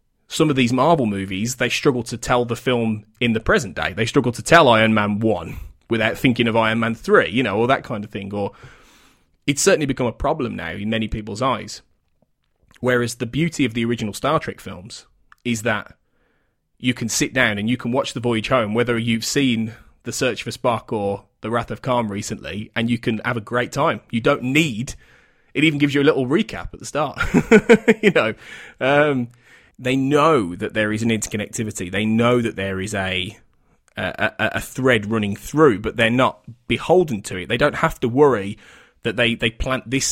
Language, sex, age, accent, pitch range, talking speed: English, male, 20-39, British, 110-130 Hz, 210 wpm